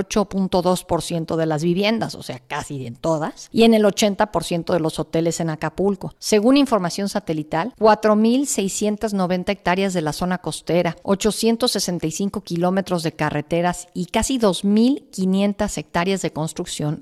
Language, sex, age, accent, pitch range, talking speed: Spanish, female, 50-69, Mexican, 180-230 Hz, 125 wpm